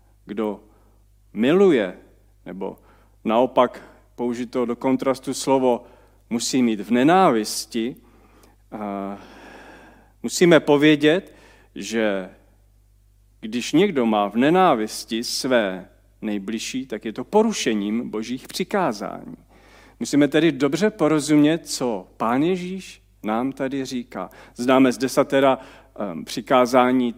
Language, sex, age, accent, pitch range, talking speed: Czech, male, 40-59, native, 105-140 Hz, 95 wpm